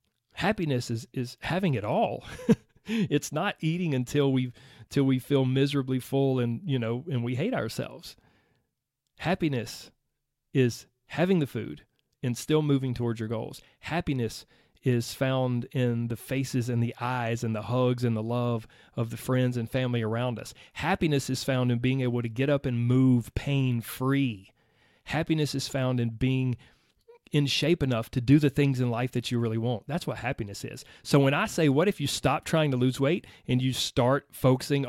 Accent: American